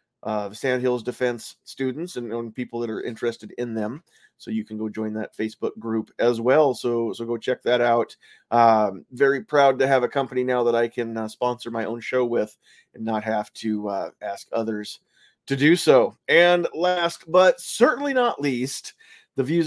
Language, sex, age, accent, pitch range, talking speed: English, male, 30-49, American, 115-155 Hz, 190 wpm